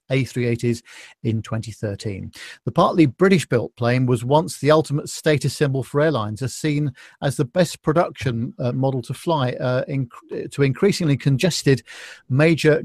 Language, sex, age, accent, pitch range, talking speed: English, male, 50-69, British, 120-150 Hz, 150 wpm